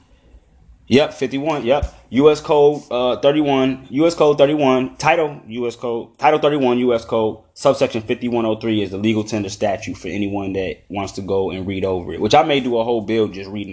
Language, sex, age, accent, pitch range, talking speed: English, male, 20-39, American, 100-135 Hz, 190 wpm